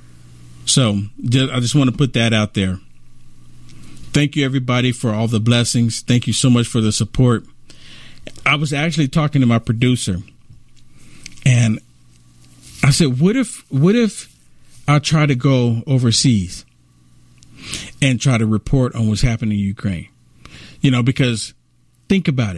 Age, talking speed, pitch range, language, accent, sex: 50-69, 150 wpm, 120-180 Hz, English, American, male